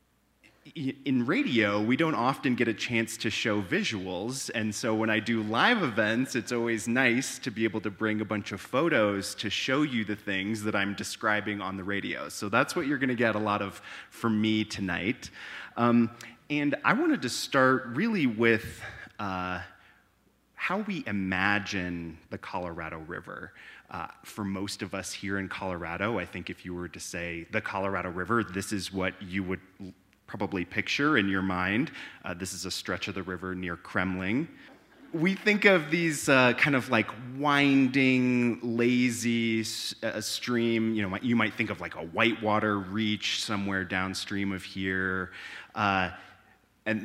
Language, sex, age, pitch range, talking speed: English, male, 30-49, 95-120 Hz, 170 wpm